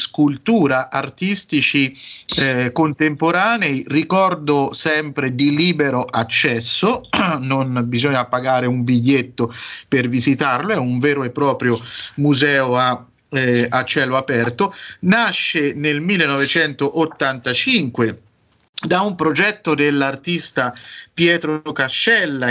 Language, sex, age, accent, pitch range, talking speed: Italian, male, 30-49, native, 120-155 Hz, 95 wpm